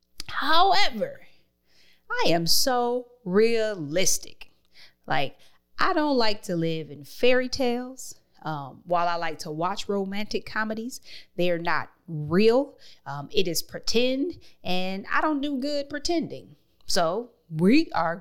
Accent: American